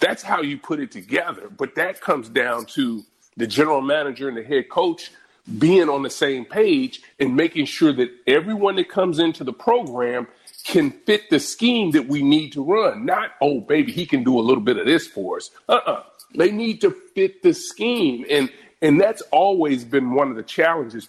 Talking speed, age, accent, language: 210 wpm, 40-59, American, English